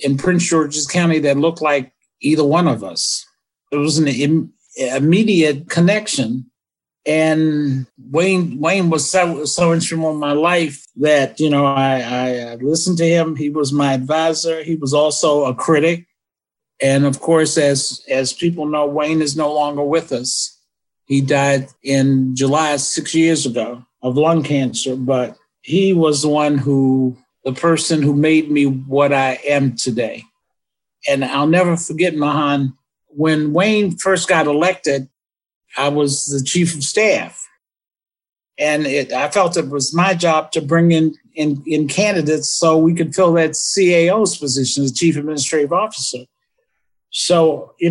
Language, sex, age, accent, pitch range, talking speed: English, male, 50-69, American, 140-170 Hz, 155 wpm